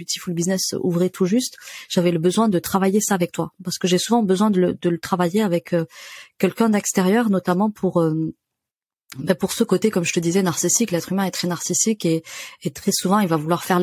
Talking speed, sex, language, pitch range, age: 225 wpm, female, French, 175-210 Hz, 30-49